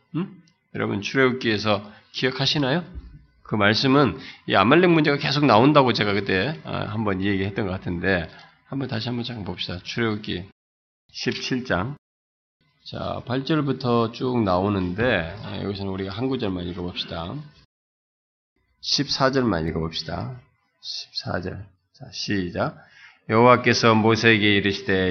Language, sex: Korean, male